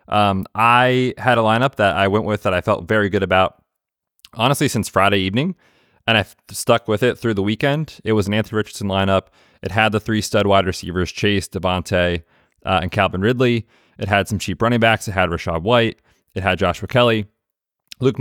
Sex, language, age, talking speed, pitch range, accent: male, English, 30-49, 200 wpm, 95-115 Hz, American